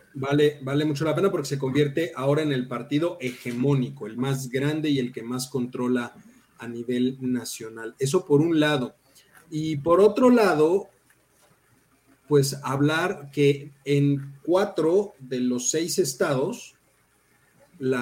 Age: 40-59